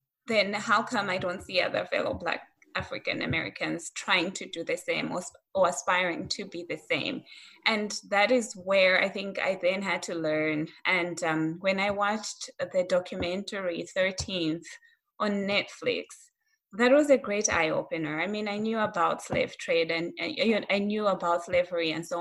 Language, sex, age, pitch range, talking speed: English, female, 20-39, 170-215 Hz, 175 wpm